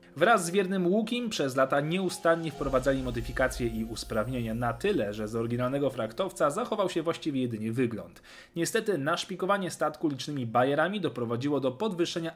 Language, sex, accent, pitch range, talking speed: Polish, male, native, 120-175 Hz, 145 wpm